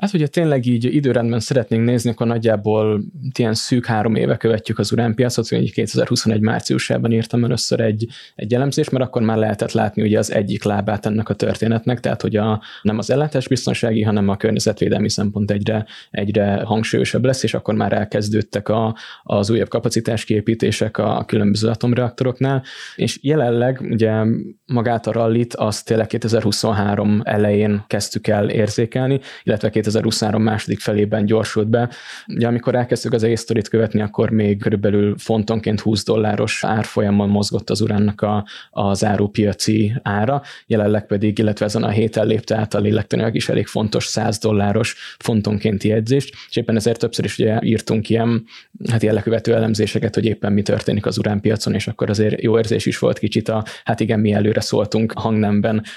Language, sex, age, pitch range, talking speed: Hungarian, male, 20-39, 105-115 Hz, 165 wpm